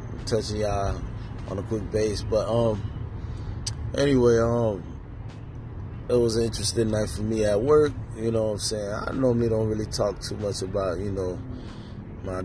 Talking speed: 170 wpm